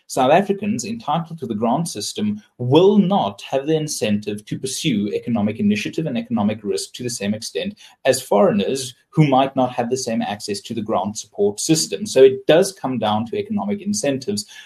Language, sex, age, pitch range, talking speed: English, male, 30-49, 130-205 Hz, 185 wpm